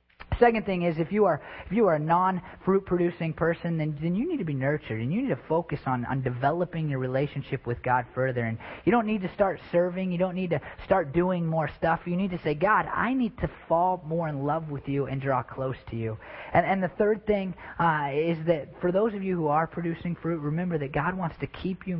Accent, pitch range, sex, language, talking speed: American, 125-175 Hz, male, English, 245 wpm